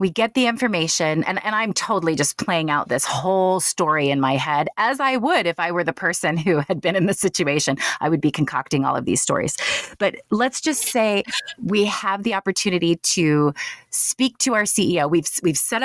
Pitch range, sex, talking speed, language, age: 155-210 Hz, female, 210 wpm, English, 30-49